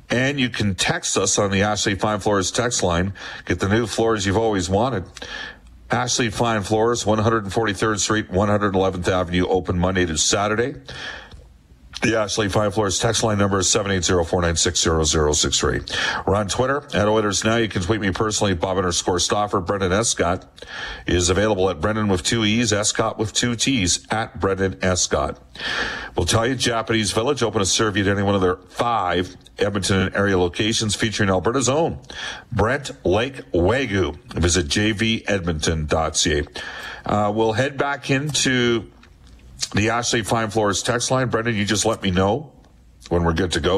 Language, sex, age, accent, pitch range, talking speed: English, male, 50-69, American, 90-115 Hz, 175 wpm